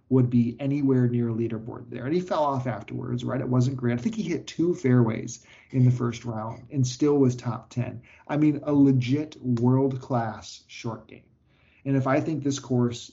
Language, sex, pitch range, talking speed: English, male, 120-135 Hz, 200 wpm